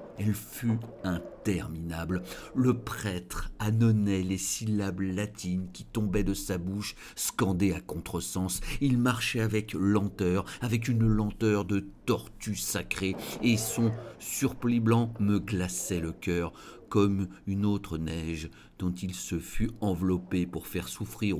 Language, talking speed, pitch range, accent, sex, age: French, 130 wpm, 90-110 Hz, French, male, 50-69